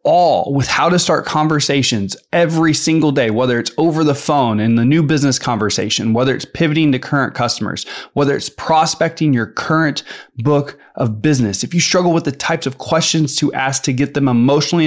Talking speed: 190 wpm